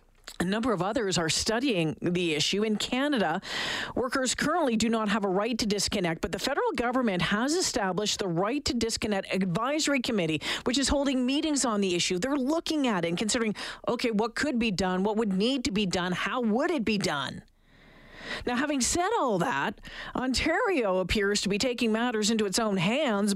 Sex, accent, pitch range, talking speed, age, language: female, American, 195-255 Hz, 195 wpm, 40-59, English